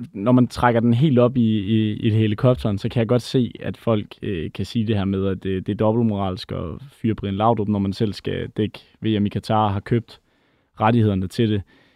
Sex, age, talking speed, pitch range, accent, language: male, 20-39, 225 wpm, 105-120 Hz, native, Danish